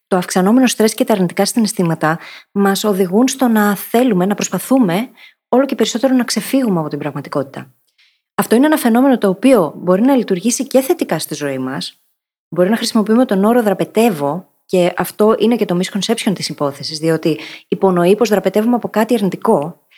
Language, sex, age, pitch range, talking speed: Greek, female, 20-39, 185-245 Hz, 170 wpm